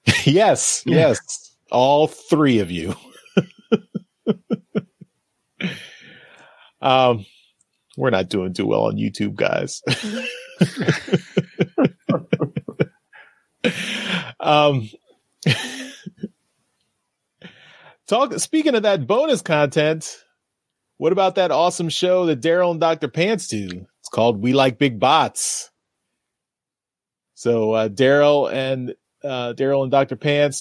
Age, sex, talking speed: 30-49, male, 95 wpm